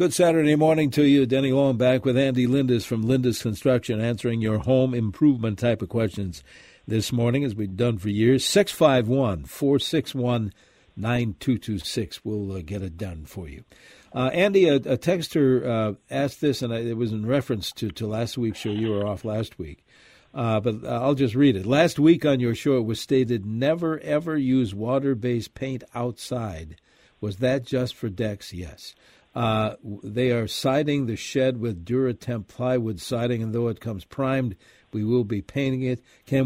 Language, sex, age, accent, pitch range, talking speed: English, male, 60-79, American, 110-135 Hz, 195 wpm